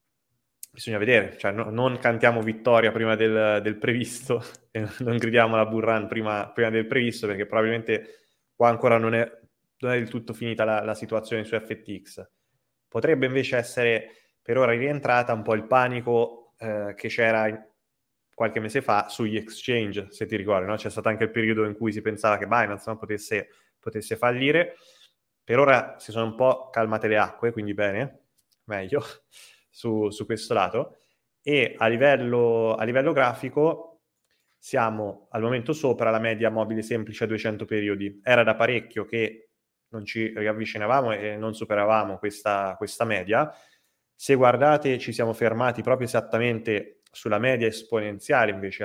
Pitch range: 110-120 Hz